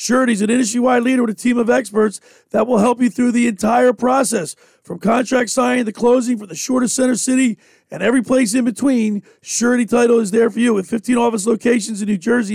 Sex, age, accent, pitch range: male, 40-59, American, 225-255 Hz